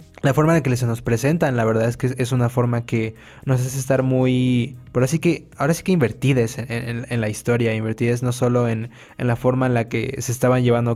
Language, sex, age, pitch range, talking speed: Spanish, male, 20-39, 120-140 Hz, 245 wpm